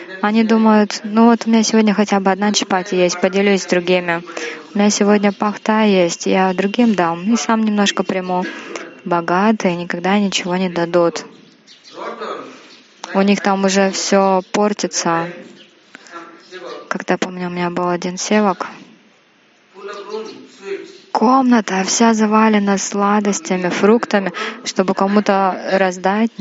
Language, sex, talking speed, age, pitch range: Russian, female, 120 wpm, 20-39, 180-205 Hz